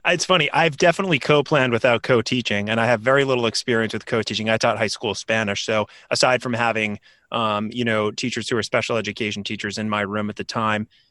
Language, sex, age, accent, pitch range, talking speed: English, male, 30-49, American, 105-135 Hz, 210 wpm